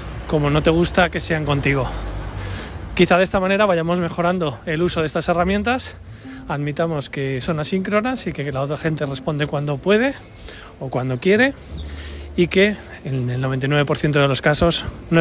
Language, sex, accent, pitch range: Spanish, male, Spanish, 135-175 Hz